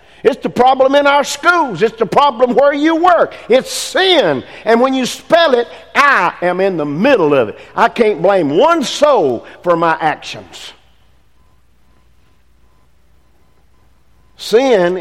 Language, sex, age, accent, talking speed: English, male, 50-69, American, 140 wpm